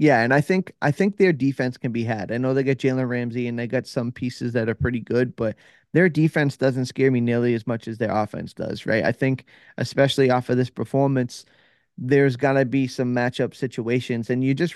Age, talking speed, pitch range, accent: 20-39, 230 wpm, 120-140 Hz, American